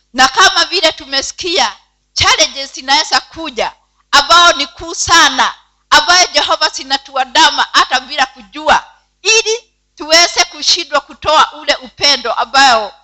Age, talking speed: 50-69, 110 wpm